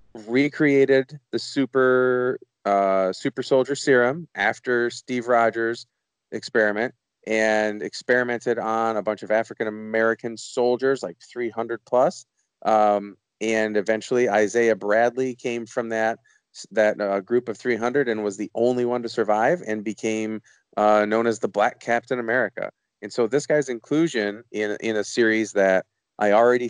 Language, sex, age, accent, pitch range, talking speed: English, male, 30-49, American, 105-125 Hz, 145 wpm